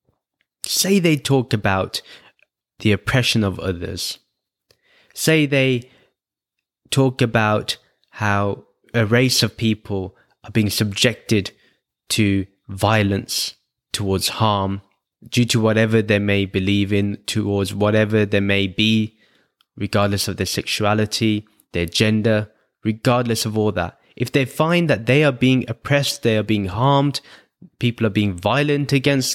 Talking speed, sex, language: 130 wpm, male, English